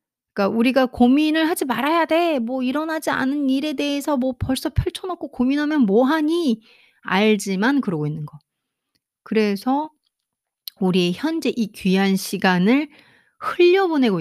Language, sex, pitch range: Korean, female, 175-265 Hz